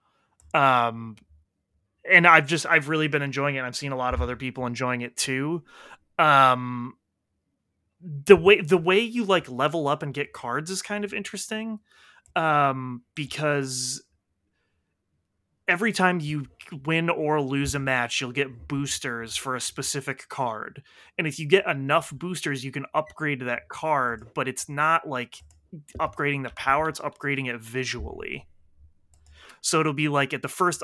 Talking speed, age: 160 wpm, 30-49